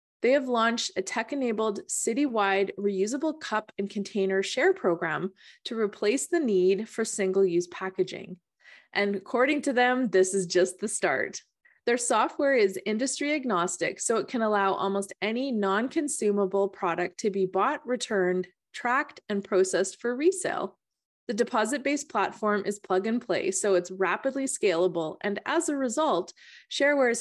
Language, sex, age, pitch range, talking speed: English, female, 20-39, 190-250 Hz, 140 wpm